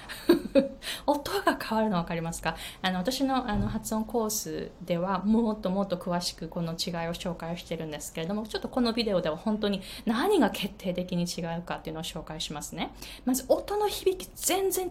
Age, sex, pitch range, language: 20-39, female, 180-280 Hz, Japanese